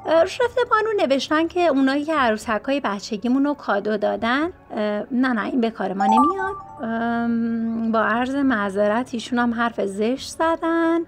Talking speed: 145 wpm